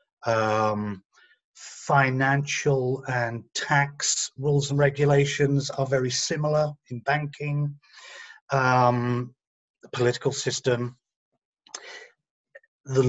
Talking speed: 80 wpm